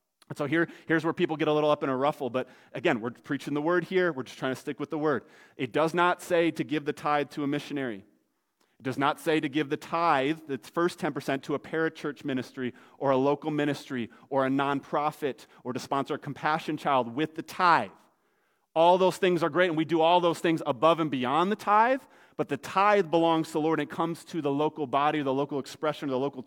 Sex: male